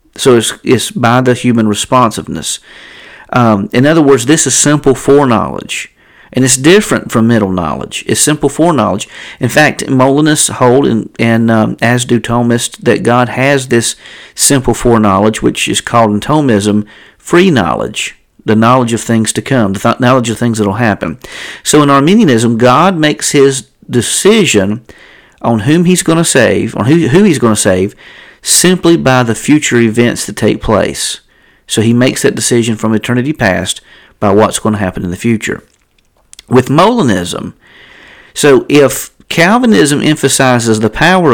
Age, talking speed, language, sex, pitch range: 50-69, 160 wpm, English, male, 110-145 Hz